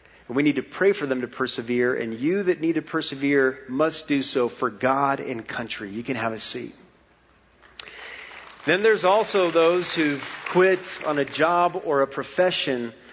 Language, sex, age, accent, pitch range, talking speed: English, male, 40-59, American, 135-180 Hz, 180 wpm